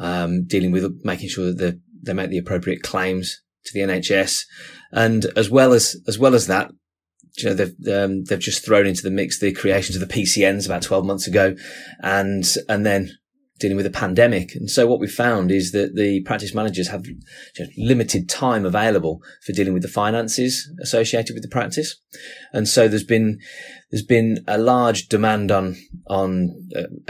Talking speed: 190 wpm